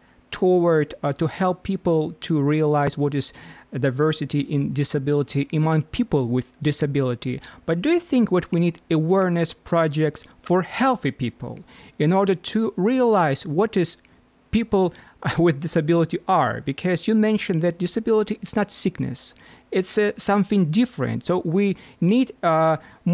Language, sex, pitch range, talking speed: English, male, 140-190 Hz, 140 wpm